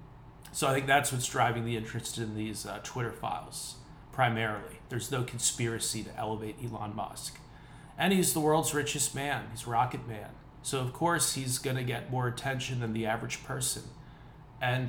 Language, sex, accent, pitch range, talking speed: English, male, American, 120-145 Hz, 175 wpm